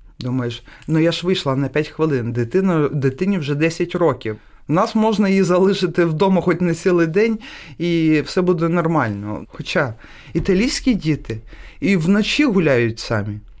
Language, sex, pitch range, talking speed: Ukrainian, male, 125-195 Hz, 150 wpm